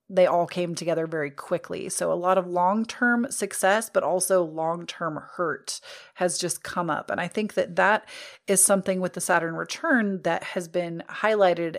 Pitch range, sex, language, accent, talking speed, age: 170-205 Hz, female, English, American, 180 wpm, 30-49